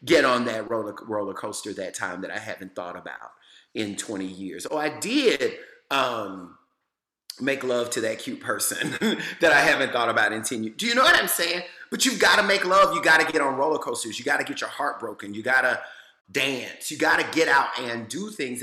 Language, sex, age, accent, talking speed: English, male, 30-49, American, 230 wpm